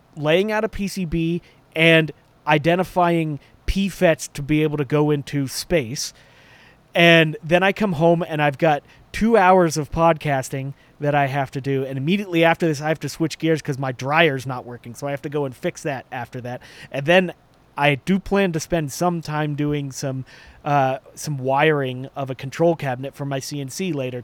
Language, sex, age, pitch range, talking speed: English, male, 30-49, 135-170 Hz, 190 wpm